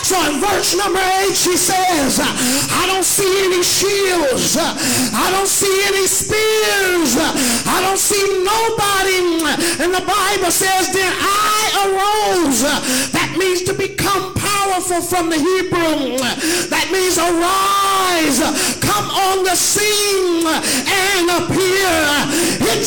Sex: male